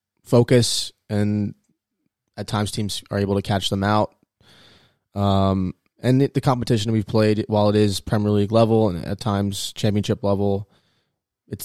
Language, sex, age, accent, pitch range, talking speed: English, male, 20-39, American, 100-110 Hz, 150 wpm